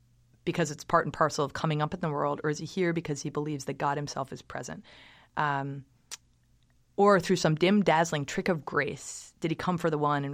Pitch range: 140-160 Hz